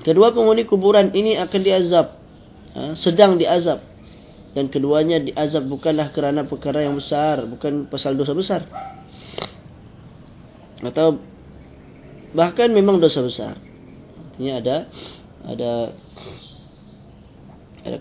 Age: 20-39